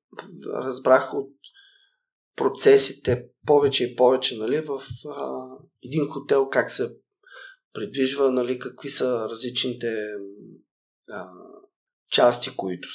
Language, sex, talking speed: Bulgarian, male, 95 wpm